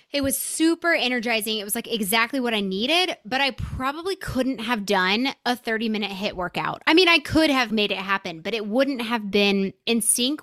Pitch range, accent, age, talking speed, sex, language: 215-280 Hz, American, 20-39, 215 wpm, female, English